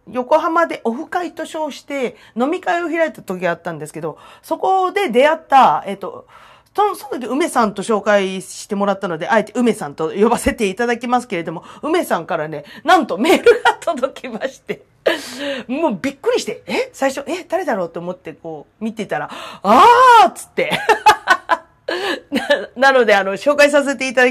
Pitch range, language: 205-295 Hz, Japanese